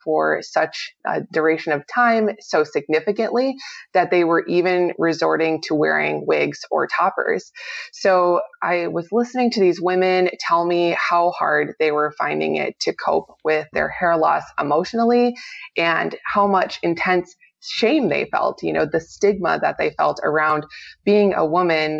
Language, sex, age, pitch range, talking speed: English, female, 20-39, 160-200 Hz, 160 wpm